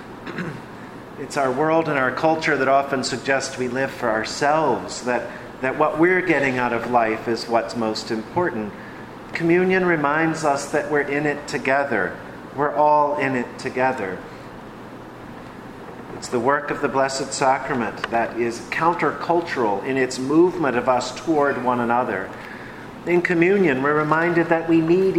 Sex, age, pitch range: male, 40-59, 125-155 Hz